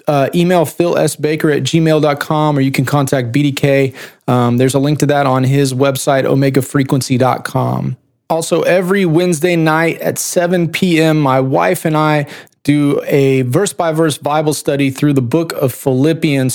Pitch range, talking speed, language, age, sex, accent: 130-155 Hz, 155 wpm, English, 30-49, male, American